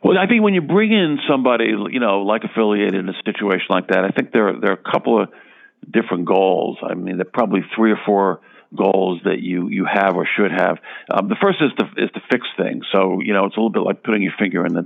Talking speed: 265 wpm